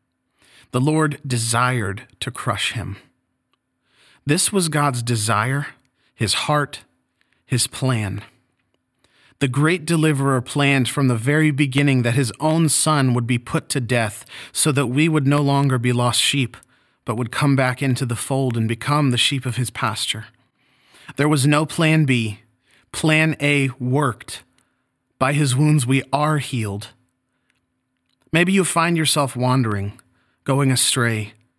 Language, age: English, 30-49